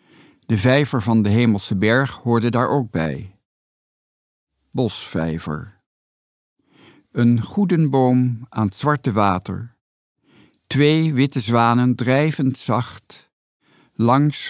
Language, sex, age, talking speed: English, male, 50-69, 95 wpm